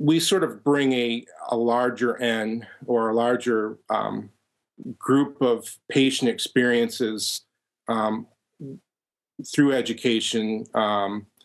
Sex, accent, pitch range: male, American, 110-125 Hz